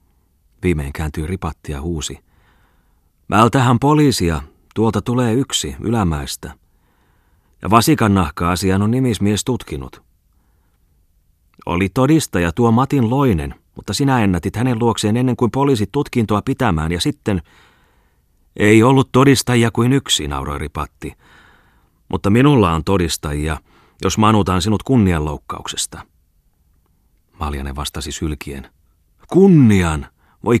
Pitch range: 80-120 Hz